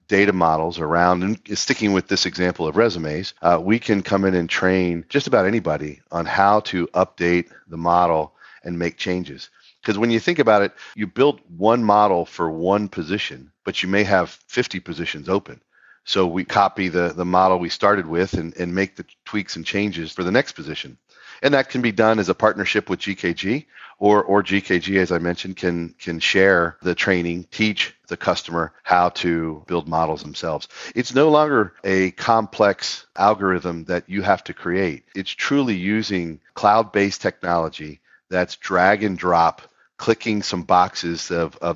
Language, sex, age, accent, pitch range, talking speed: English, male, 40-59, American, 85-100 Hz, 175 wpm